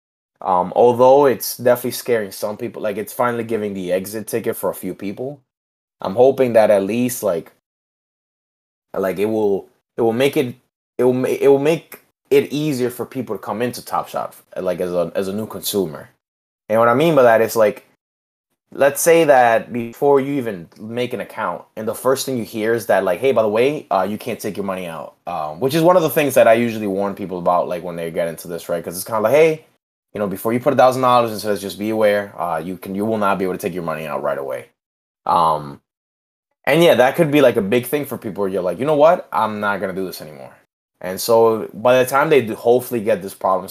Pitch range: 100-125 Hz